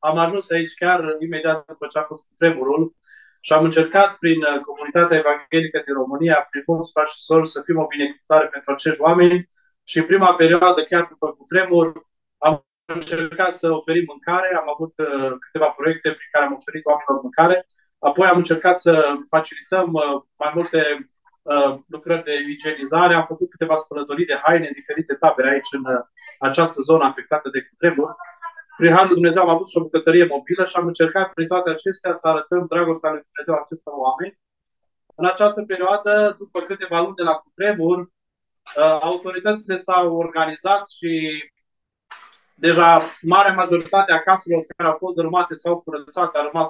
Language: Romanian